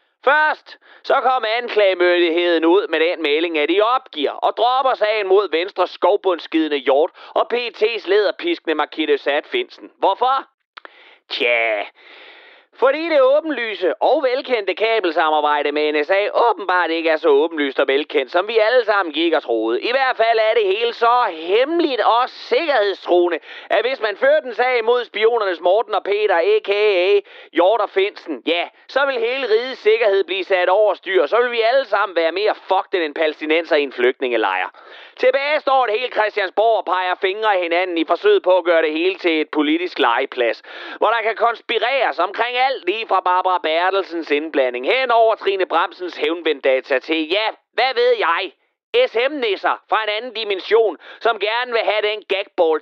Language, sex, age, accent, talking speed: Danish, male, 30-49, native, 170 wpm